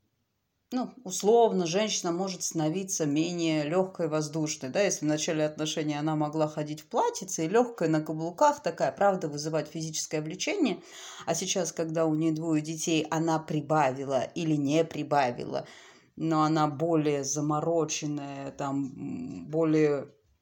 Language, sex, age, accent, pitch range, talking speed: Russian, female, 30-49, native, 155-190 Hz, 130 wpm